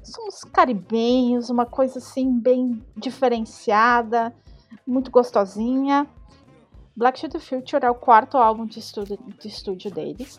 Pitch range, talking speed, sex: 215-270 Hz, 125 wpm, female